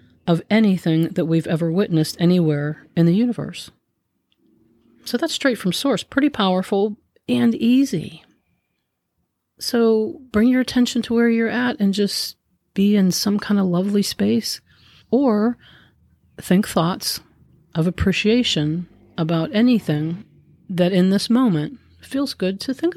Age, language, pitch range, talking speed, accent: 40-59, English, 165-225 Hz, 135 wpm, American